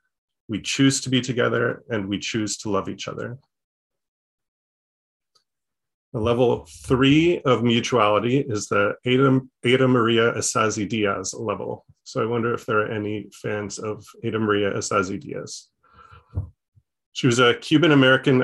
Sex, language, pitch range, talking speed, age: male, English, 105-125 Hz, 135 wpm, 30-49